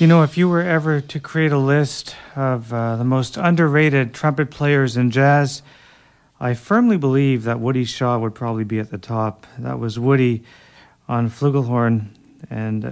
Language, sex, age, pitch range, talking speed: English, male, 40-59, 115-140 Hz, 170 wpm